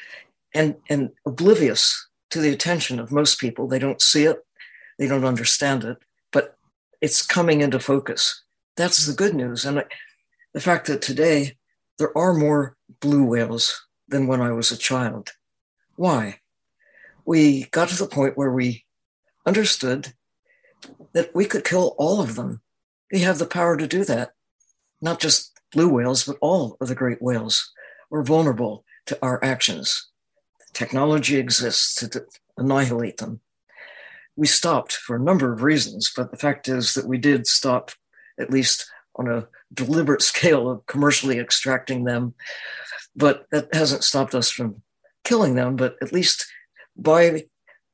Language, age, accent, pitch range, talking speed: English, 60-79, American, 125-155 Hz, 155 wpm